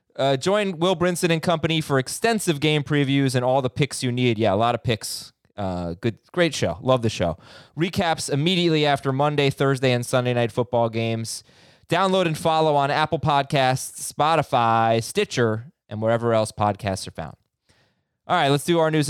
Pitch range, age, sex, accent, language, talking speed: 115-145 Hz, 20-39, male, American, English, 180 wpm